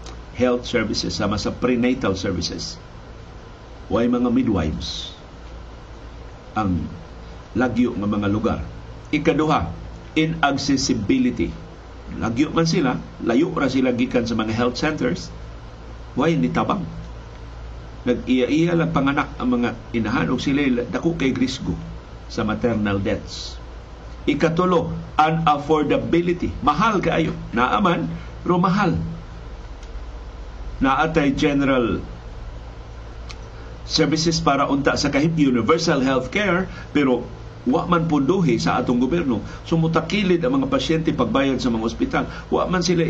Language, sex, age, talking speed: Filipino, male, 50-69, 105 wpm